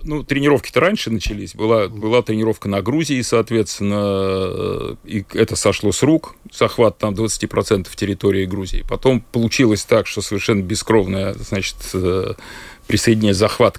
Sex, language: male, Russian